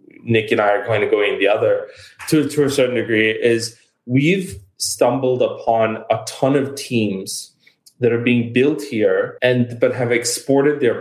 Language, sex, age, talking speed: English, male, 20-39, 180 wpm